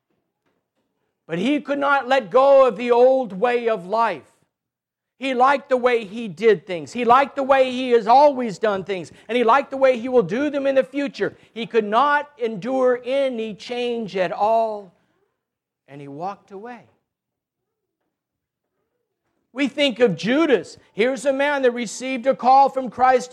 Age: 50-69